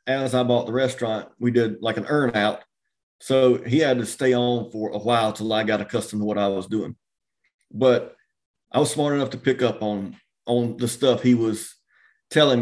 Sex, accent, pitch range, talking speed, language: male, American, 110-130 Hz, 210 wpm, English